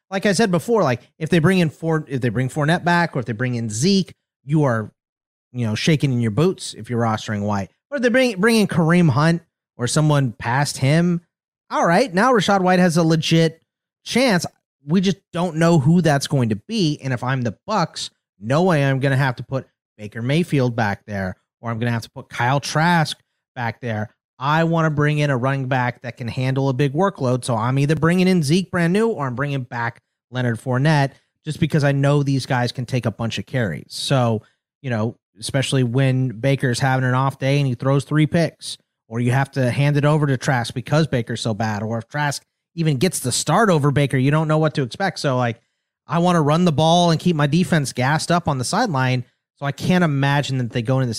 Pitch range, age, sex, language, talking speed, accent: 125-165 Hz, 30-49, male, English, 230 wpm, American